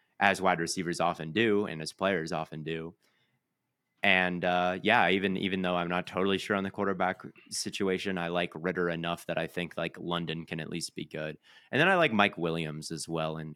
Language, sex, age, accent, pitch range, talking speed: English, male, 30-49, American, 80-95 Hz, 210 wpm